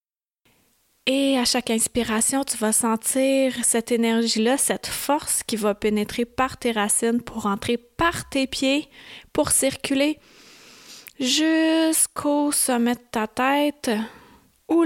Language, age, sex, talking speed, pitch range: French, 30-49, female, 120 wpm, 230-270 Hz